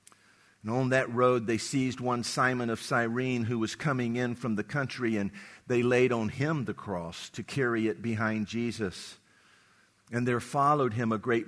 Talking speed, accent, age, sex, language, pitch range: 185 wpm, American, 50-69, male, English, 100-125 Hz